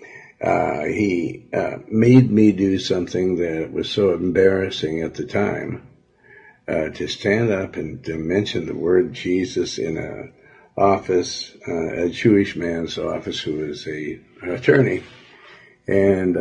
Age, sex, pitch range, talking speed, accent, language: 60-79, male, 85-100 Hz, 140 wpm, American, English